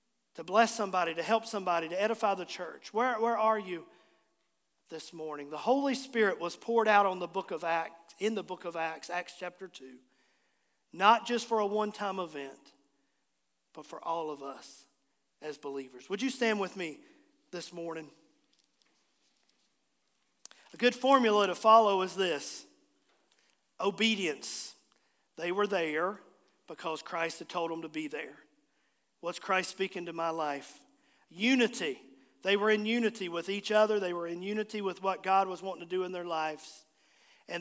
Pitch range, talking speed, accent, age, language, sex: 160-215 Hz, 165 wpm, American, 40-59, English, male